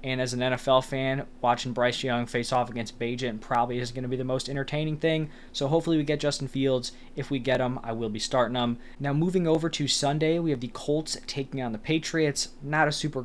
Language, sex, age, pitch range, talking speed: English, male, 20-39, 120-145 Hz, 235 wpm